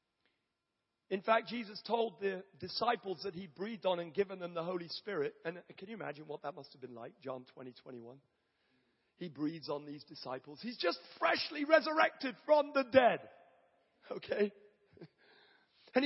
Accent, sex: British, male